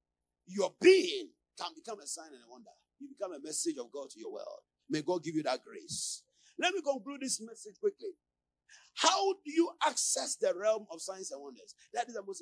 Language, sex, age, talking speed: English, male, 40-59, 215 wpm